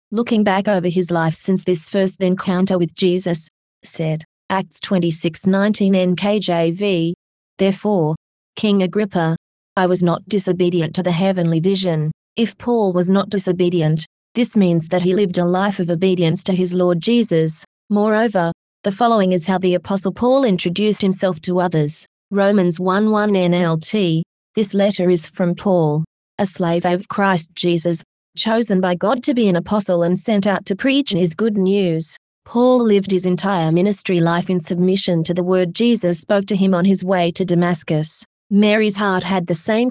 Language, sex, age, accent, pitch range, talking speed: English, female, 20-39, Australian, 175-205 Hz, 165 wpm